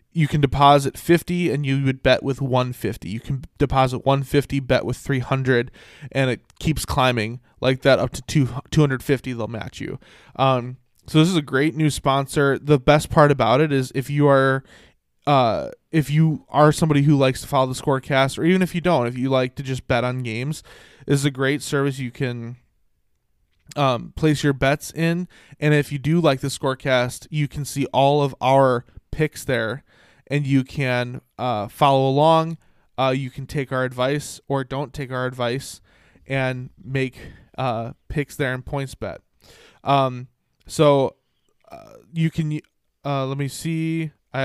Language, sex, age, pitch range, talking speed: English, male, 20-39, 130-150 Hz, 180 wpm